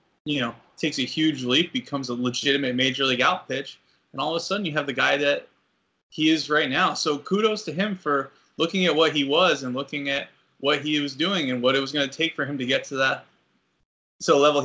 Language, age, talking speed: English, 20-39, 240 wpm